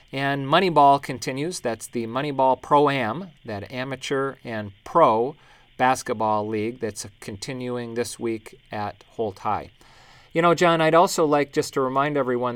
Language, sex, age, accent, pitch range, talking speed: English, male, 40-59, American, 125-145 Hz, 145 wpm